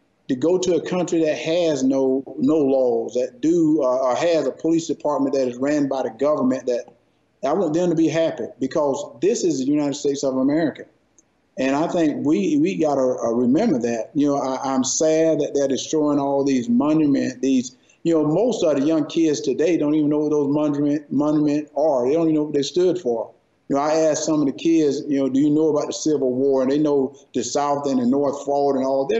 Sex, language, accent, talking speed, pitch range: male, English, American, 230 wpm, 135-165 Hz